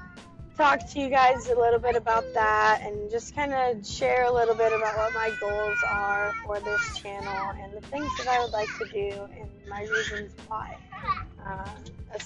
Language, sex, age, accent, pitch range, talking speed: English, female, 10-29, American, 205-250 Hz, 195 wpm